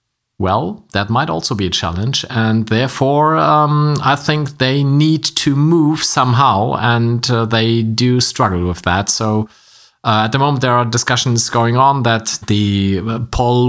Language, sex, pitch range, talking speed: English, male, 105-125 Hz, 160 wpm